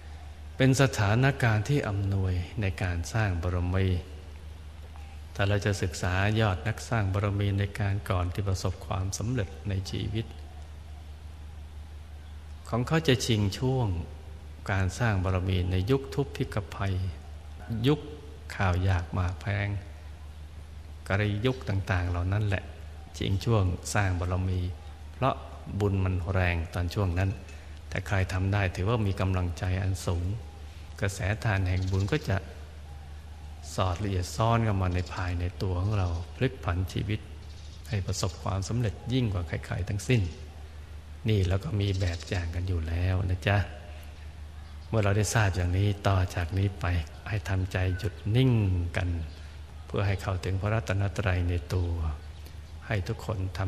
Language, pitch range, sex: Thai, 80-100 Hz, male